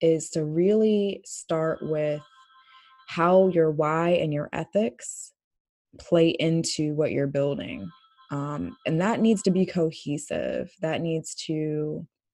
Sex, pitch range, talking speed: female, 150-185 Hz, 125 wpm